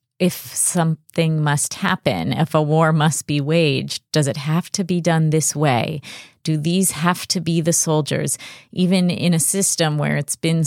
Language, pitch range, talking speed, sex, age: English, 140-165 Hz, 180 wpm, female, 30-49